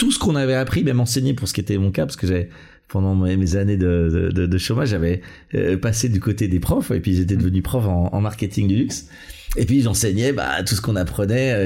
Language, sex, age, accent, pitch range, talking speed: French, male, 40-59, French, 90-115 Hz, 240 wpm